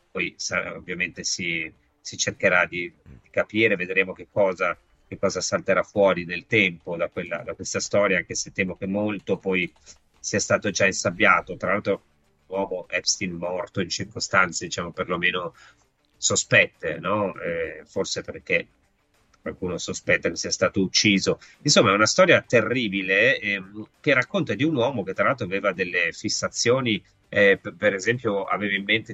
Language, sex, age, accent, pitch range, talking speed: Italian, male, 30-49, native, 90-110 Hz, 155 wpm